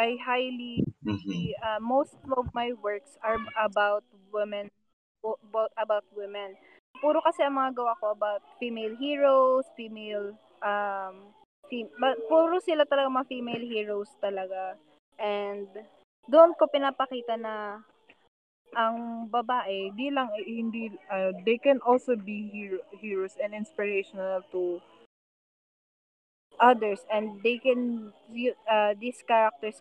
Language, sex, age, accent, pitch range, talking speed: Filipino, female, 20-39, native, 205-245 Hz, 125 wpm